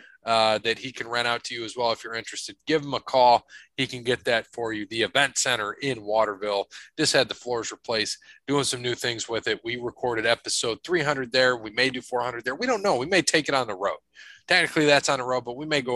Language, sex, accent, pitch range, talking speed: English, male, American, 110-135 Hz, 255 wpm